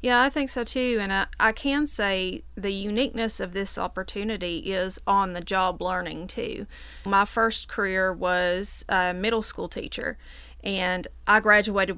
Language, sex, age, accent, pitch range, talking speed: English, female, 30-49, American, 185-225 Hz, 160 wpm